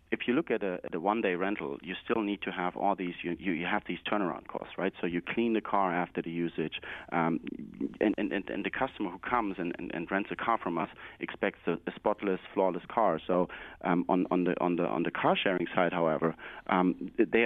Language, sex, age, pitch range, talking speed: English, male, 30-49, 90-105 Hz, 235 wpm